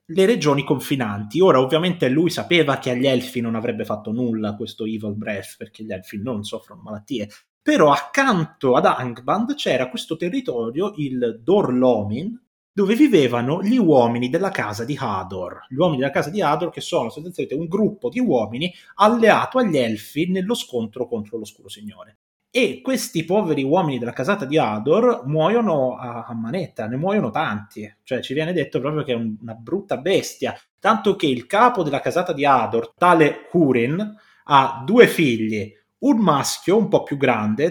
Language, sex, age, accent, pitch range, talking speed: Italian, male, 30-49, native, 115-195 Hz, 165 wpm